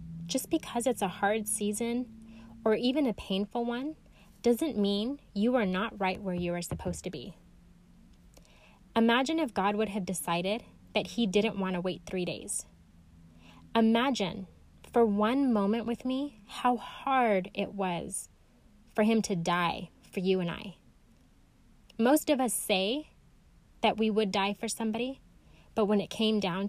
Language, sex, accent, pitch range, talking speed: English, female, American, 185-230 Hz, 155 wpm